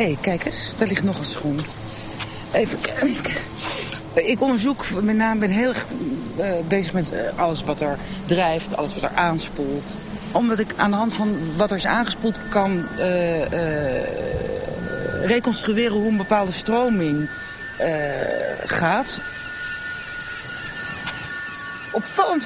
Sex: female